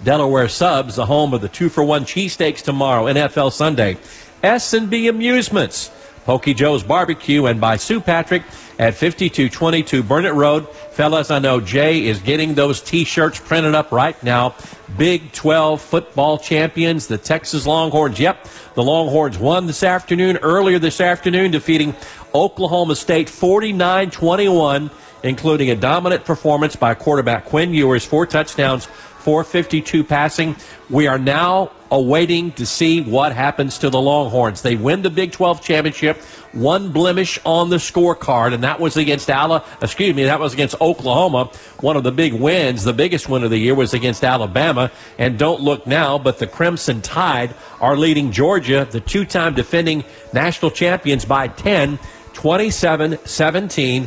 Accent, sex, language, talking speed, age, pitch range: American, male, English, 150 wpm, 50-69, 130-165 Hz